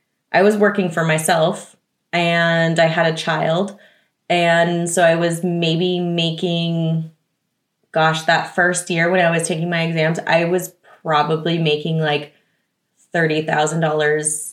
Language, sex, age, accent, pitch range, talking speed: English, female, 20-39, American, 170-210 Hz, 140 wpm